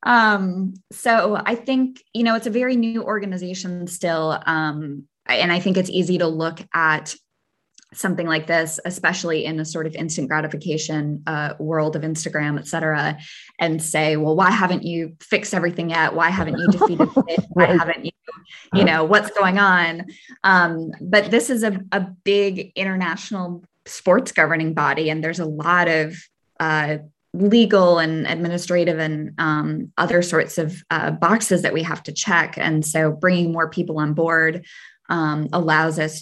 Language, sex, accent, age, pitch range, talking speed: English, female, American, 20-39, 155-185 Hz, 165 wpm